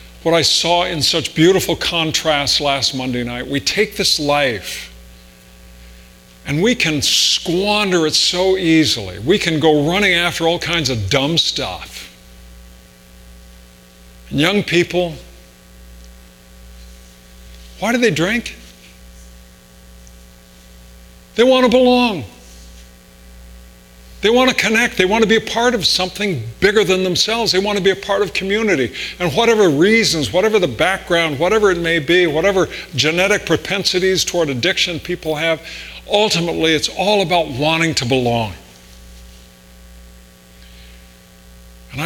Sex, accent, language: male, American, English